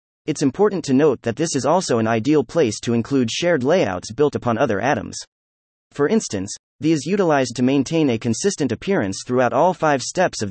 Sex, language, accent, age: male, English, American, 30-49